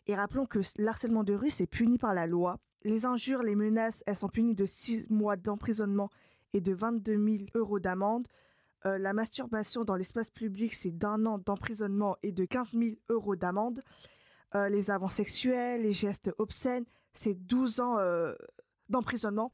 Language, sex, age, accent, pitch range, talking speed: French, female, 20-39, French, 195-230 Hz, 170 wpm